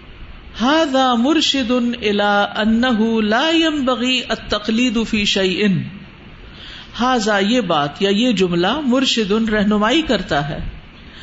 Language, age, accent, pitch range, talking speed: English, 50-69, Indian, 200-265 Hz, 100 wpm